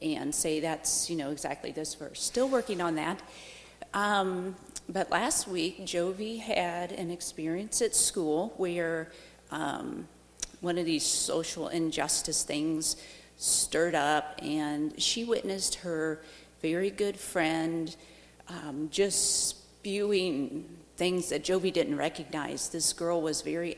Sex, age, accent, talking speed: female, 40-59, American, 130 wpm